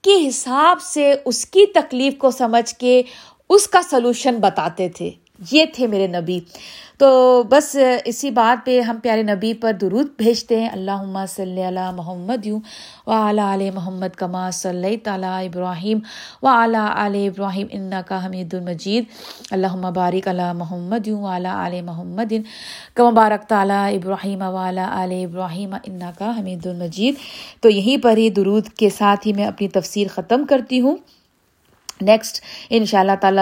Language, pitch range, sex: Urdu, 185-235 Hz, female